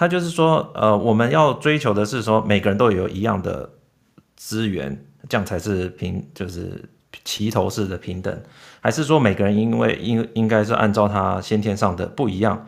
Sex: male